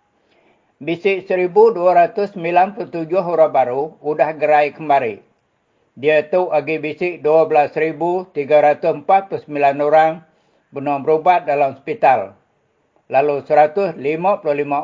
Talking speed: 75 wpm